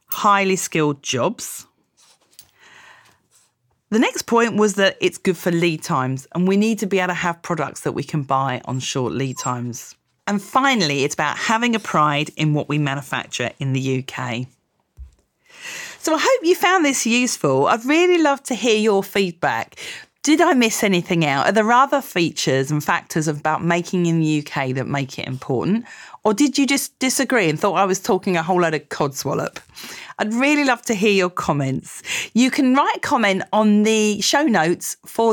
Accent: British